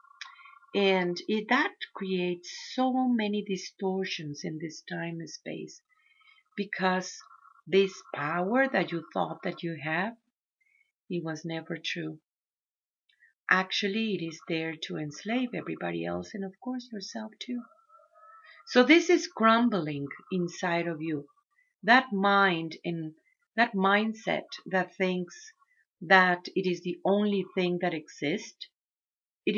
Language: English